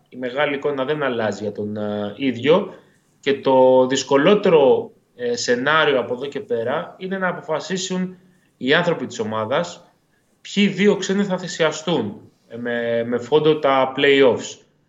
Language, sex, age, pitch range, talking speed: Greek, male, 20-39, 120-165 Hz, 130 wpm